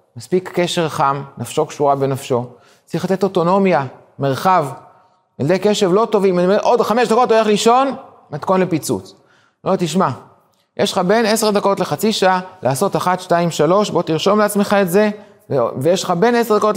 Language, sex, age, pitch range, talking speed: Hebrew, male, 30-49, 150-200 Hz, 175 wpm